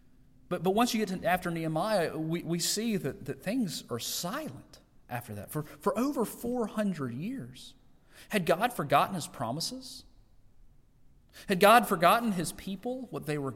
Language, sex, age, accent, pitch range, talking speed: English, male, 40-59, American, 130-200 Hz, 160 wpm